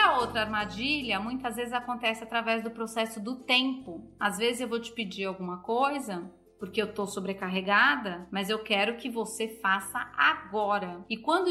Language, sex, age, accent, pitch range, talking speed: Portuguese, female, 30-49, Brazilian, 205-260 Hz, 165 wpm